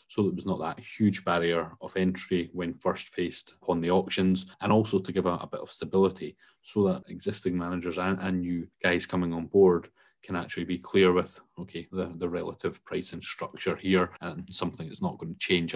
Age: 30-49